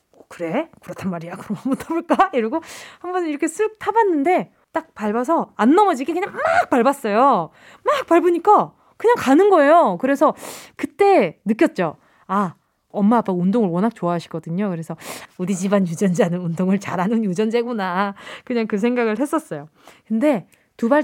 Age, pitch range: 20-39, 205-325 Hz